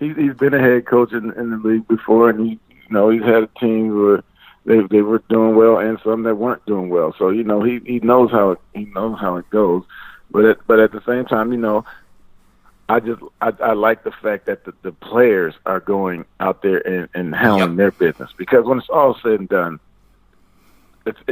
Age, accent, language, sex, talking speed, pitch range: 40-59, American, English, male, 225 wpm, 95-115 Hz